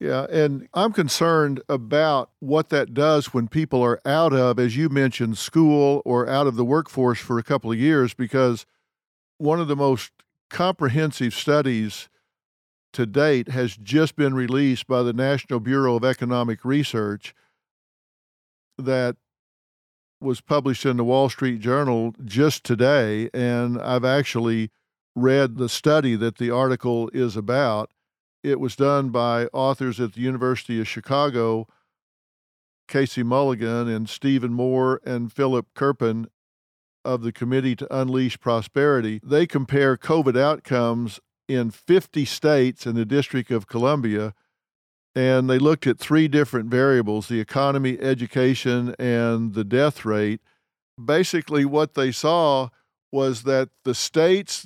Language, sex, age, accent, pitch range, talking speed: English, male, 50-69, American, 120-140 Hz, 140 wpm